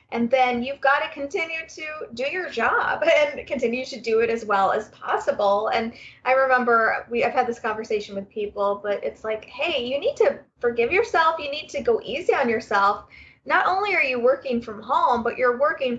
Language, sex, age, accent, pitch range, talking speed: English, female, 20-39, American, 215-285 Hz, 205 wpm